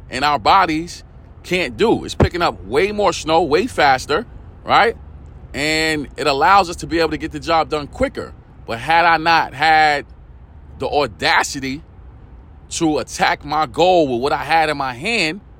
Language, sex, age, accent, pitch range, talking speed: English, male, 40-59, American, 120-165 Hz, 175 wpm